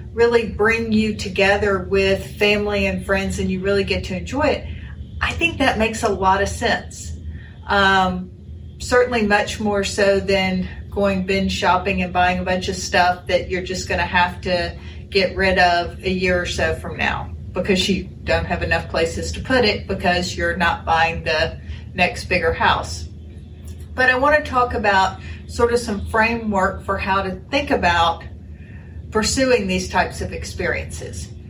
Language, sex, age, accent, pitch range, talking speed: English, female, 40-59, American, 170-205 Hz, 170 wpm